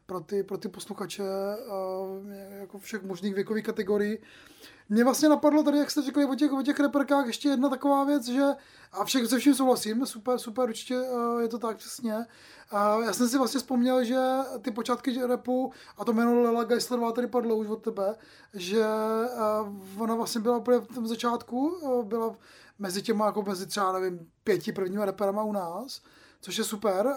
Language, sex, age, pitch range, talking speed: Czech, male, 20-39, 200-240 Hz, 175 wpm